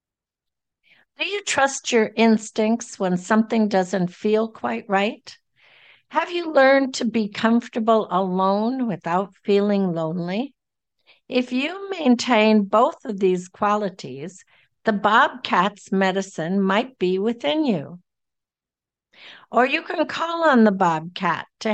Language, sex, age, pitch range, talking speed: English, female, 60-79, 190-250 Hz, 120 wpm